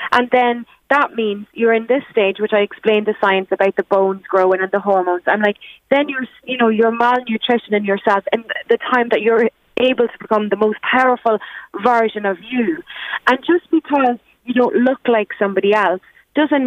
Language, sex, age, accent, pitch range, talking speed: English, female, 30-49, Irish, 195-245 Hz, 195 wpm